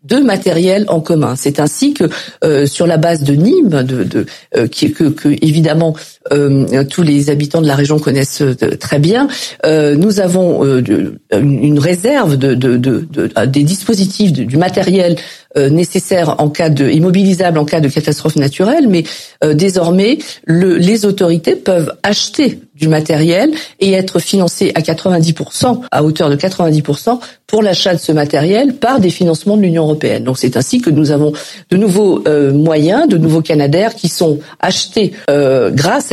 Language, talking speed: French, 175 wpm